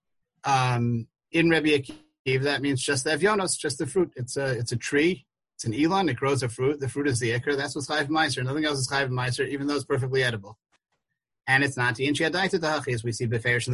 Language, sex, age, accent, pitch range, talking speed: English, male, 30-49, American, 130-160 Hz, 230 wpm